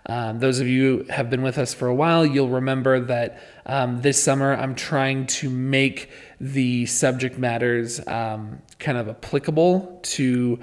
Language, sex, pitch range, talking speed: English, male, 125-150 Hz, 170 wpm